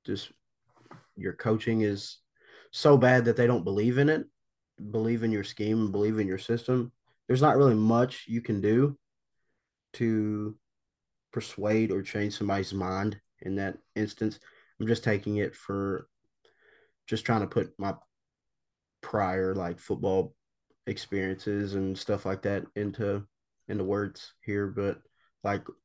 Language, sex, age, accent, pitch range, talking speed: English, male, 20-39, American, 100-115 Hz, 140 wpm